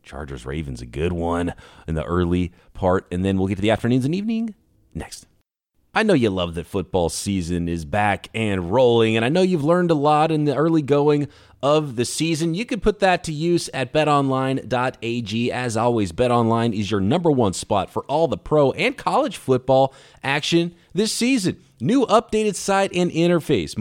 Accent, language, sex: American, English, male